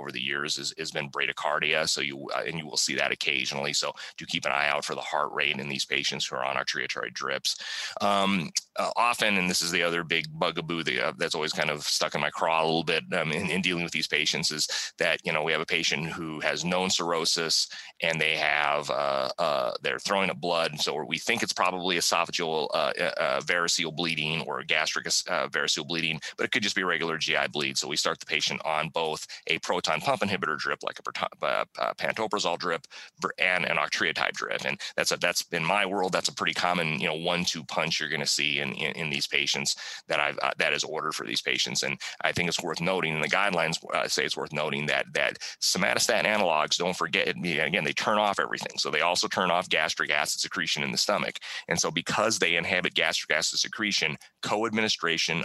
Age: 30-49